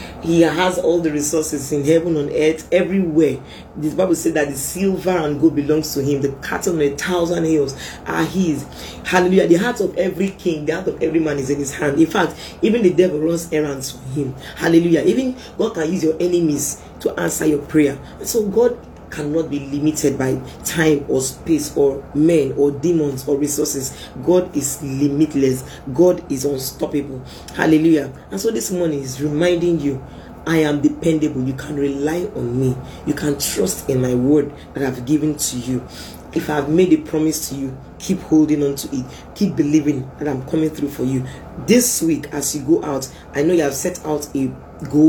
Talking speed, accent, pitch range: 195 wpm, Nigerian, 140-165 Hz